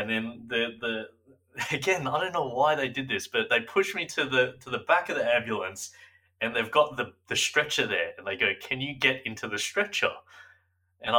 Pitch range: 105-135 Hz